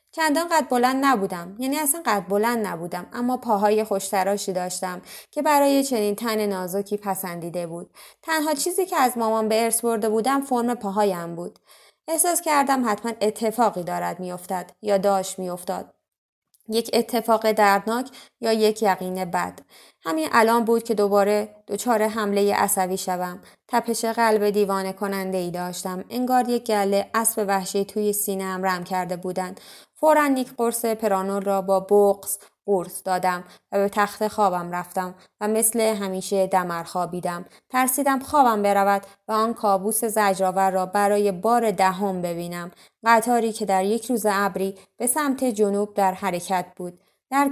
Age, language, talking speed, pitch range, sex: 20-39, Persian, 150 wpm, 190-230 Hz, female